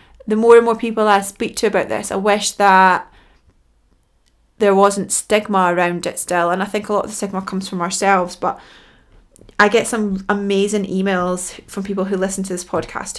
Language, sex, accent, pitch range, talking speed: English, female, British, 185-210 Hz, 195 wpm